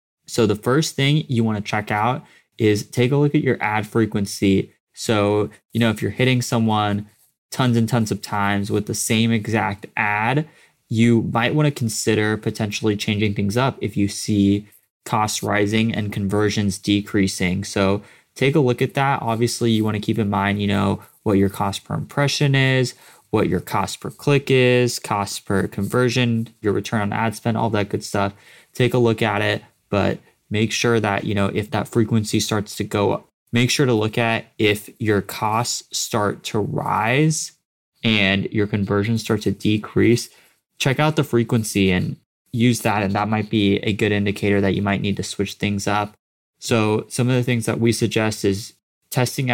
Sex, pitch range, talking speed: male, 100-120 Hz, 185 wpm